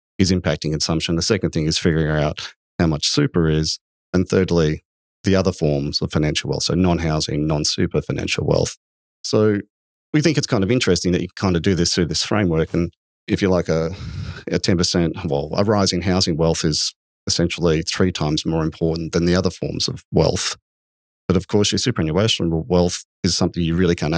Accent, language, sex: Australian, English, male